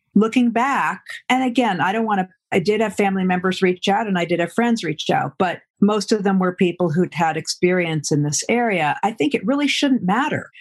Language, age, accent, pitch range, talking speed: English, 50-69, American, 180-230 Hz, 225 wpm